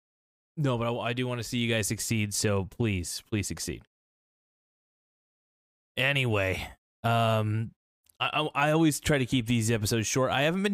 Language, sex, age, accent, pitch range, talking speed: English, male, 20-39, American, 105-140 Hz, 170 wpm